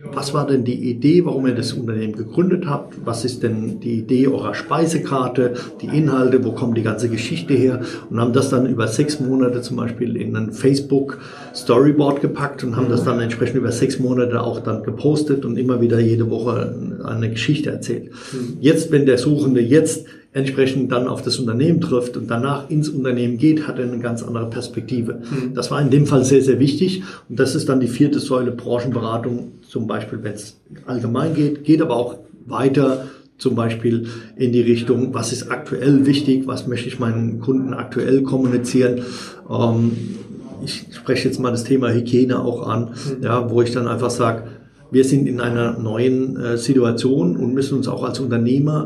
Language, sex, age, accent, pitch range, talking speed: German, male, 50-69, German, 120-135 Hz, 180 wpm